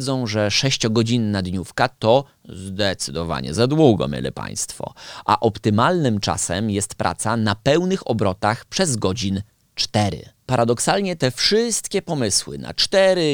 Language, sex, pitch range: Polish, male, 105-140 Hz